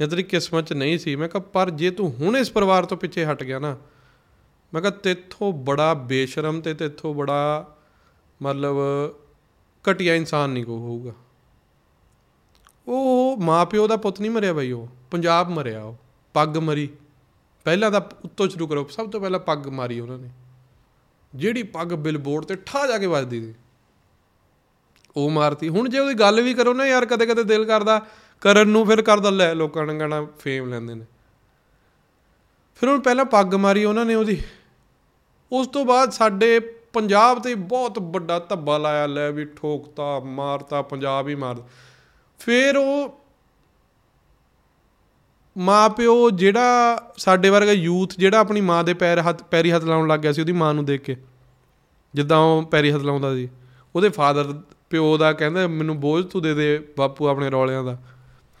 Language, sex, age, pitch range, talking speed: Punjabi, male, 30-49, 140-205 Hz, 110 wpm